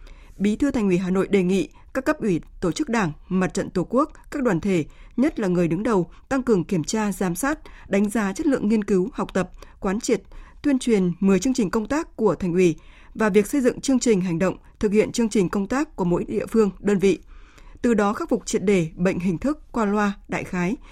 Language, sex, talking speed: Vietnamese, female, 245 wpm